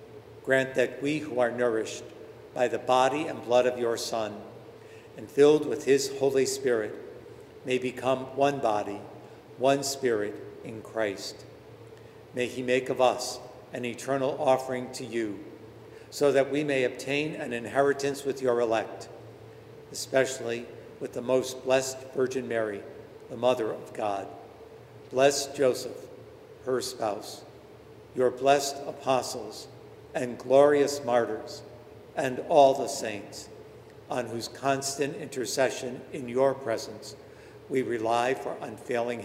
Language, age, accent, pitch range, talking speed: English, 60-79, American, 120-140 Hz, 130 wpm